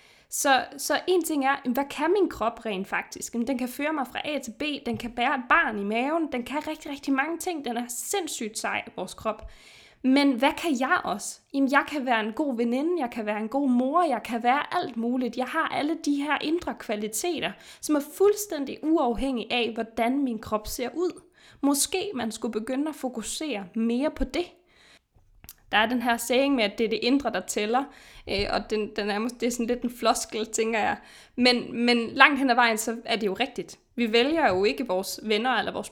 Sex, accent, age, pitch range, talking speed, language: female, native, 20-39, 225-285 Hz, 220 wpm, Danish